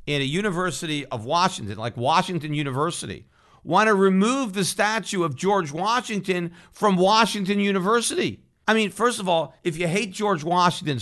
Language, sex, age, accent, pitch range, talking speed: English, male, 50-69, American, 140-190 Hz, 150 wpm